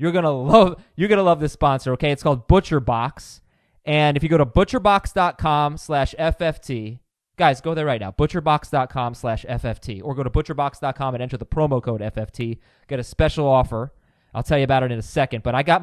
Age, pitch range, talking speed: 20-39, 130-170 Hz, 200 wpm